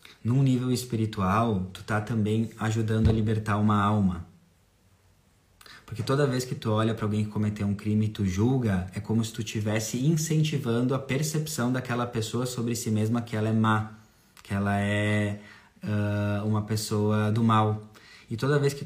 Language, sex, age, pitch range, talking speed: Portuguese, male, 20-39, 100-110 Hz, 170 wpm